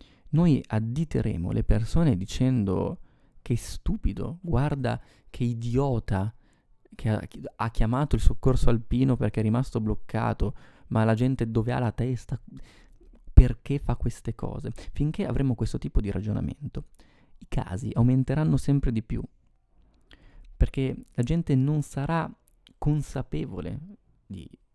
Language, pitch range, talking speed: Italian, 100-125 Hz, 125 wpm